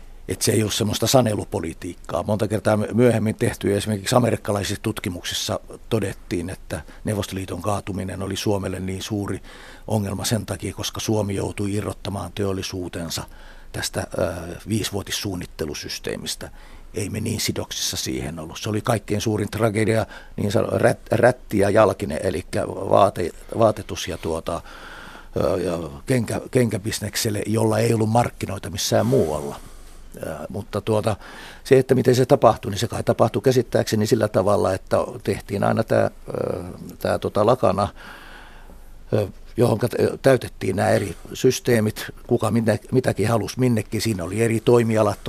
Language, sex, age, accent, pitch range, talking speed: Finnish, male, 60-79, native, 100-115 Hz, 130 wpm